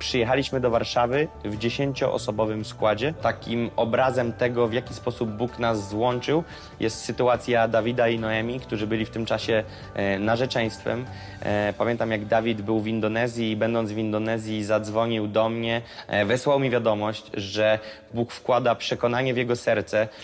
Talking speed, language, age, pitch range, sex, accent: 145 wpm, Polish, 20-39, 110-120 Hz, male, native